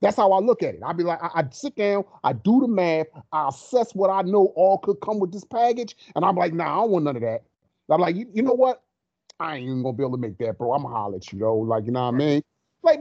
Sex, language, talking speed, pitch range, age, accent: male, English, 300 wpm, 150-220 Hz, 30-49, American